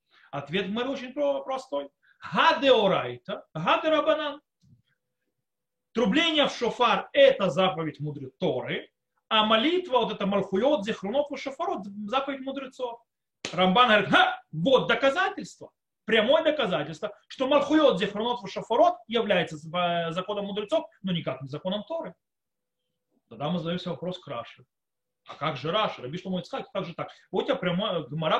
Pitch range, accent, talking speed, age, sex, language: 185-290 Hz, native, 120 wpm, 30-49, male, Russian